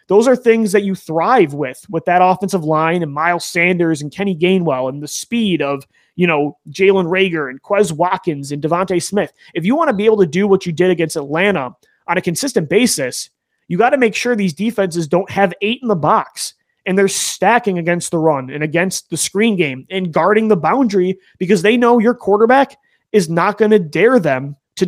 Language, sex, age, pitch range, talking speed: English, male, 30-49, 170-220 Hz, 210 wpm